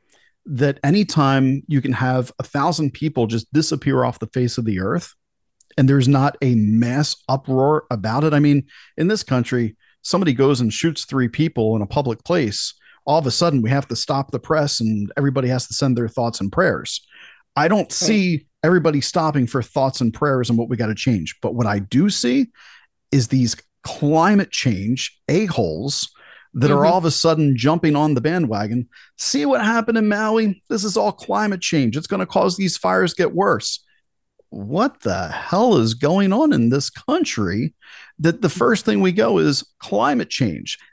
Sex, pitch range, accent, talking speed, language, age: male, 120-165 Hz, American, 190 wpm, English, 40-59